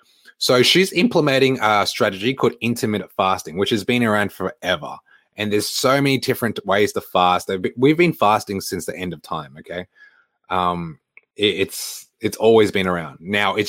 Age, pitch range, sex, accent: 20-39, 95-130 Hz, male, Australian